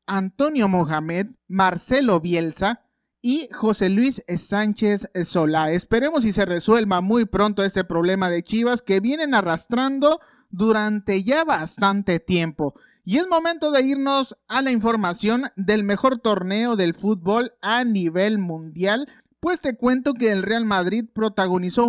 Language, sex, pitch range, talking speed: Spanish, male, 185-245 Hz, 135 wpm